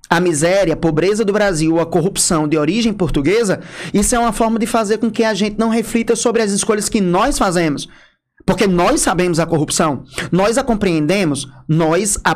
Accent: Brazilian